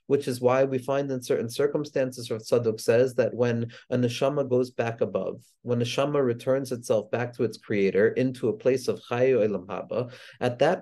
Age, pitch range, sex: 40-59, 125-155 Hz, male